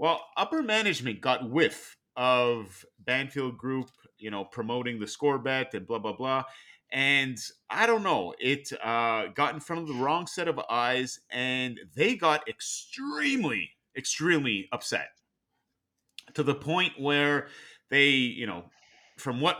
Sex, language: male, English